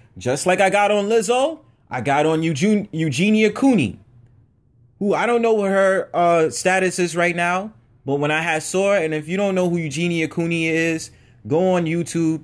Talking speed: 190 wpm